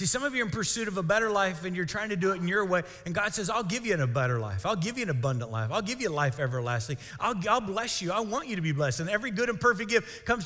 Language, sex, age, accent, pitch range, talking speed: English, male, 30-49, American, 145-230 Hz, 340 wpm